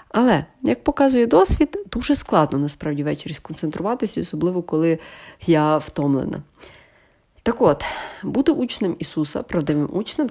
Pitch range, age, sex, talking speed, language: 150-210 Hz, 30-49, female, 115 wpm, Ukrainian